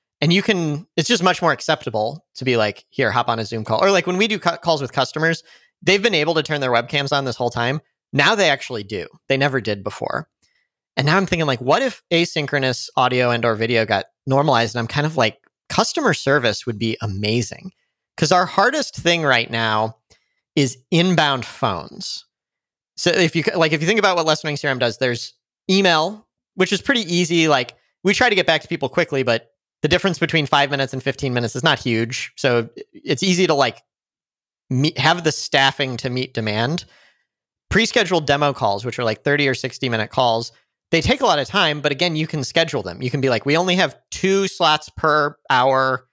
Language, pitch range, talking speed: English, 120-165 Hz, 205 wpm